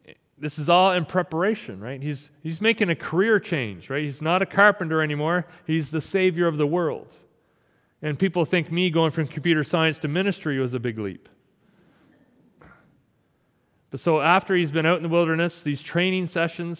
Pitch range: 140-170 Hz